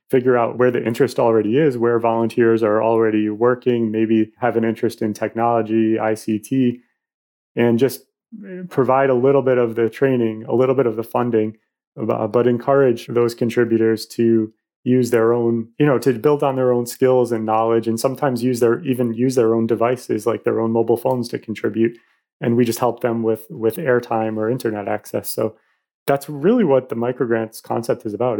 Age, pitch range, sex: 30-49, 115-130 Hz, male